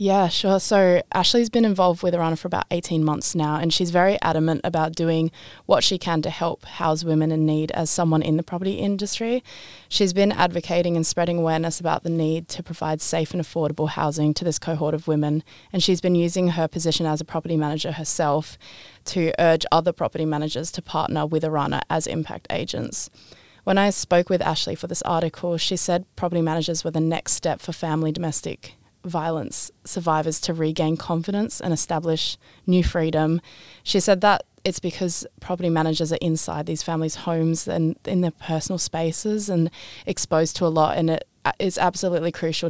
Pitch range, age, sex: 160-180 Hz, 20-39, female